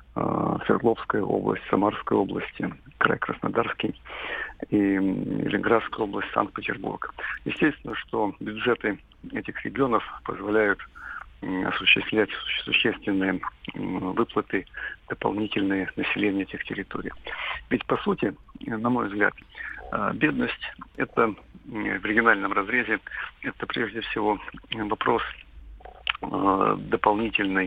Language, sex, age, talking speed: Russian, male, 50-69, 85 wpm